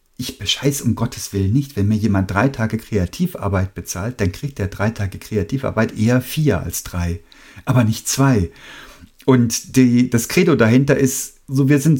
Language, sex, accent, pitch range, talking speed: German, male, German, 105-135 Hz, 175 wpm